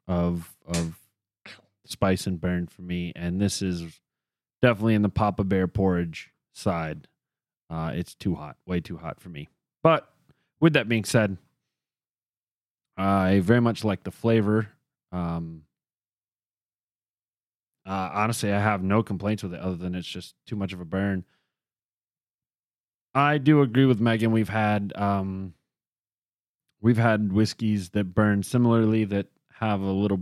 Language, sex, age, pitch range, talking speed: English, male, 30-49, 95-110 Hz, 145 wpm